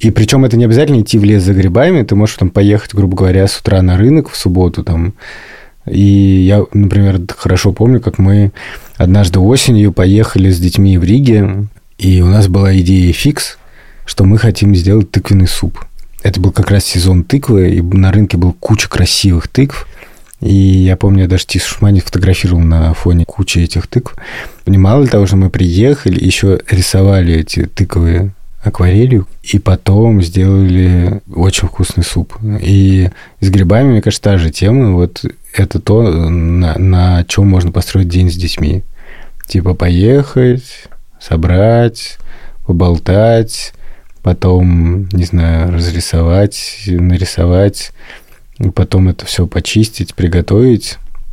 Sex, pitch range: male, 90-105 Hz